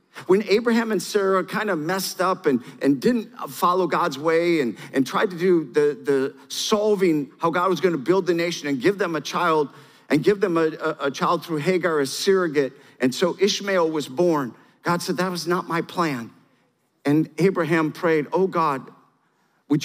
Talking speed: 195 wpm